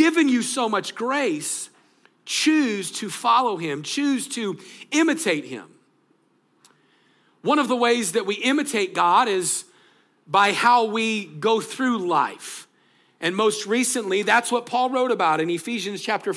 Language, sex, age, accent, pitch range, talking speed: English, male, 40-59, American, 190-250 Hz, 145 wpm